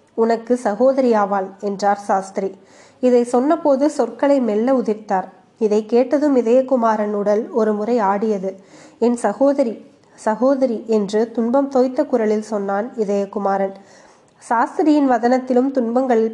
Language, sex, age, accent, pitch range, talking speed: Tamil, female, 20-39, native, 205-250 Hz, 105 wpm